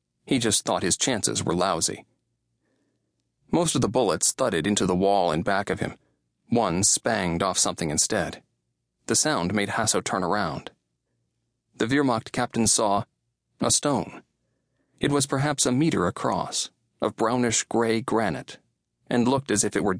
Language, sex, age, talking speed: English, male, 40-59, 155 wpm